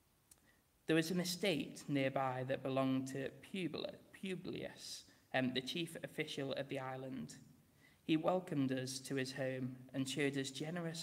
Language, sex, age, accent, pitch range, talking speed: English, male, 20-39, British, 130-145 Hz, 135 wpm